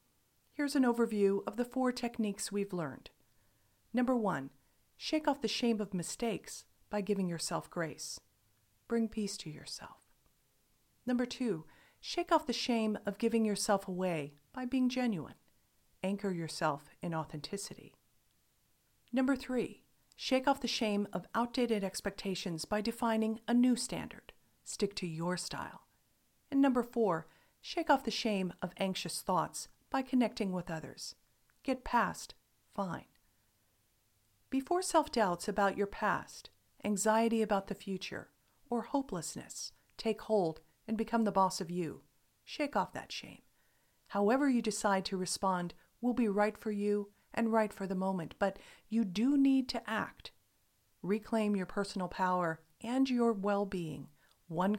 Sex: female